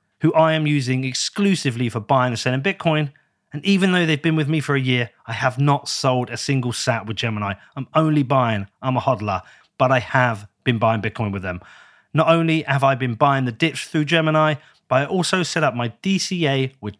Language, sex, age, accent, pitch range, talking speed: English, male, 30-49, British, 125-165 Hz, 210 wpm